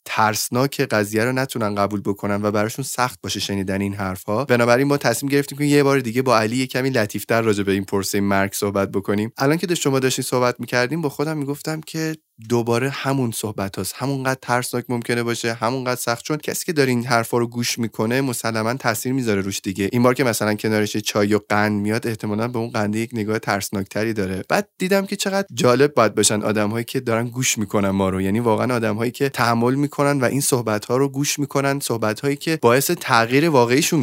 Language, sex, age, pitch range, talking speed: Persian, male, 20-39, 105-140 Hz, 205 wpm